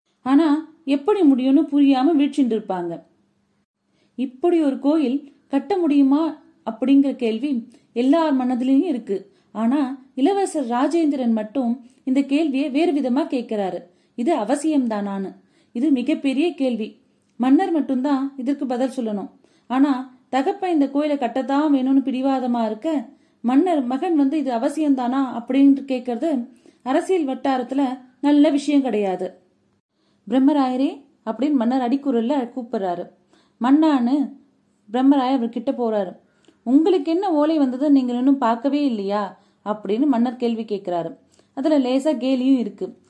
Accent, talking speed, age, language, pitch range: native, 115 wpm, 30-49, Tamil, 235-285 Hz